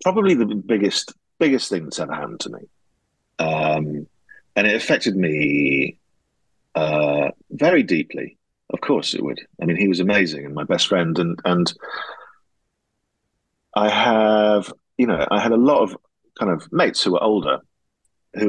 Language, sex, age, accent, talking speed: English, male, 40-59, British, 160 wpm